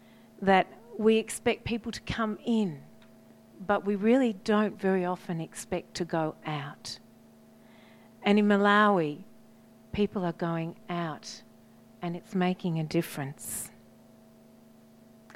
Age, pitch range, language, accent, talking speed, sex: 40-59, 180-220 Hz, English, Australian, 115 wpm, female